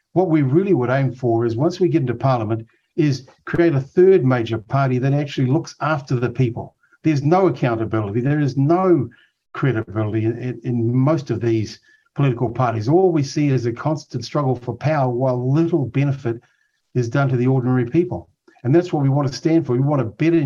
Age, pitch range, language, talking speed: 50-69, 120-155 Hz, English, 200 wpm